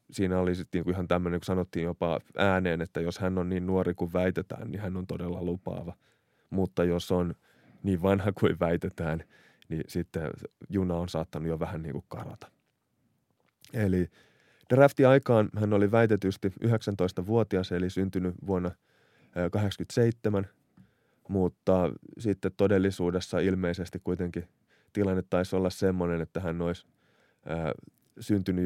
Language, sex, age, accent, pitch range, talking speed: Finnish, male, 30-49, native, 90-100 Hz, 130 wpm